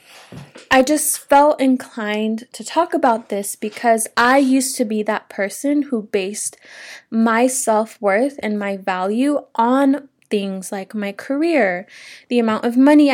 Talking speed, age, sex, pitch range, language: 140 wpm, 10-29, female, 205-255 Hz, English